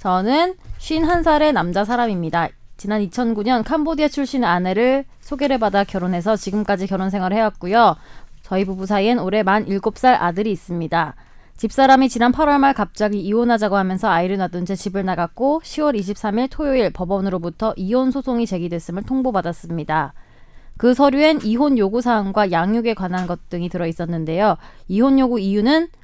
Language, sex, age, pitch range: Korean, female, 20-39, 190-250 Hz